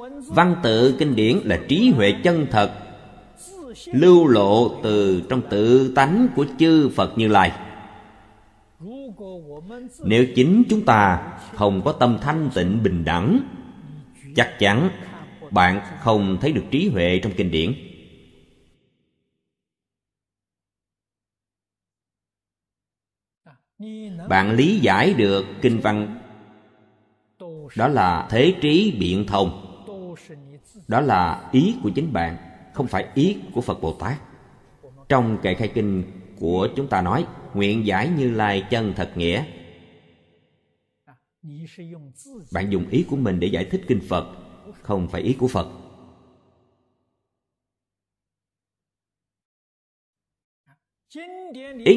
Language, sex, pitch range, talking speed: Vietnamese, male, 95-145 Hz, 115 wpm